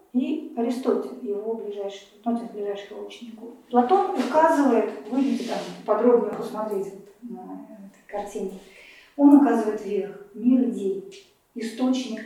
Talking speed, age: 105 wpm, 40-59